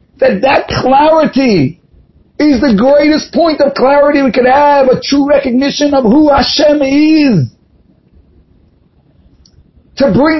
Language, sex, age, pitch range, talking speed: English, male, 50-69, 215-270 Hz, 120 wpm